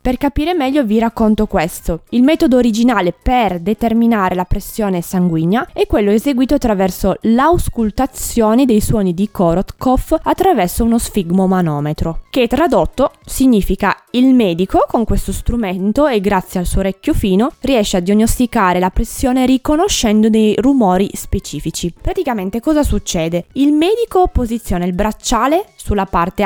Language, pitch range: Italian, 185-255 Hz